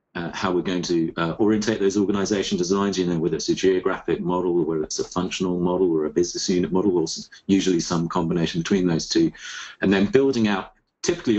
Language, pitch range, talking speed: English, 90-110 Hz, 215 wpm